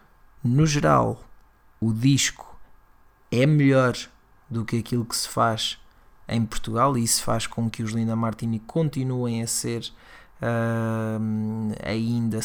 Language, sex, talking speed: Portuguese, male, 125 wpm